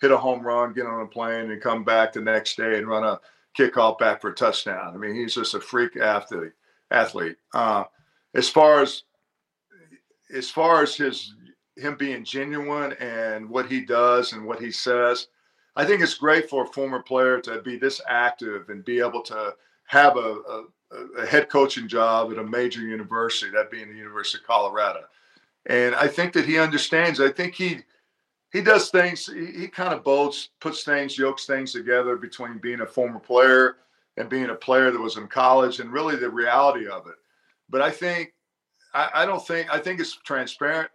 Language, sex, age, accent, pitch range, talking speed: English, male, 50-69, American, 120-145 Hz, 195 wpm